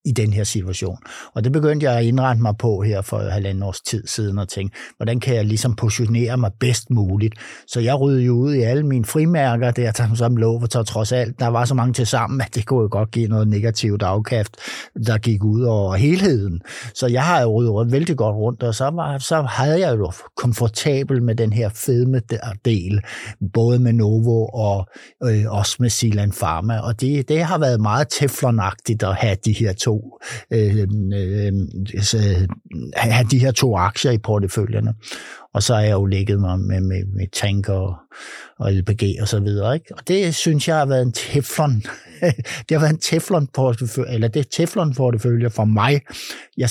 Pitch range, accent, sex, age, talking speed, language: 105-130 Hz, native, male, 60-79, 190 wpm, Danish